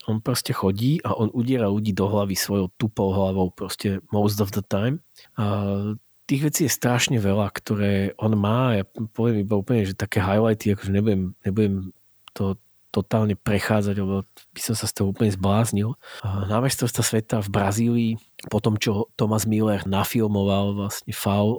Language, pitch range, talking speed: Slovak, 105-120 Hz, 165 wpm